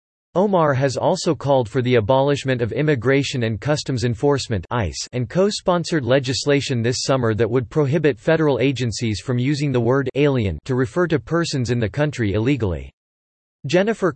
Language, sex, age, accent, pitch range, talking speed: English, male, 40-59, American, 120-150 Hz, 155 wpm